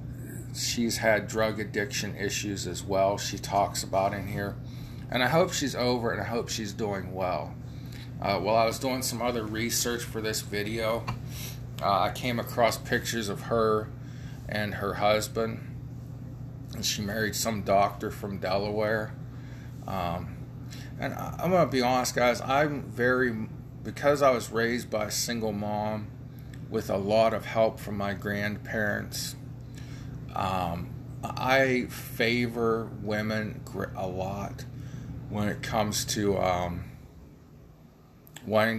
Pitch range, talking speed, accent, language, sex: 105-125 Hz, 140 wpm, American, English, male